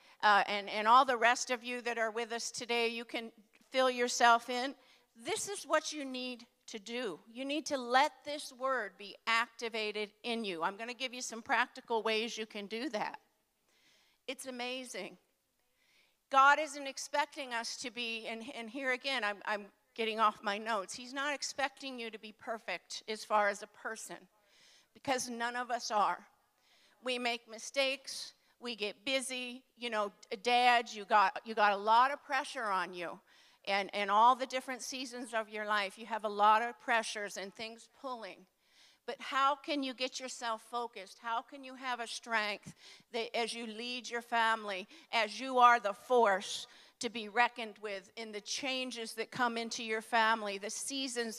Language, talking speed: English, 185 wpm